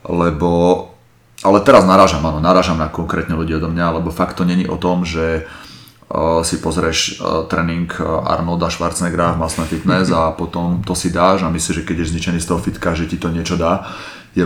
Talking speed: 195 wpm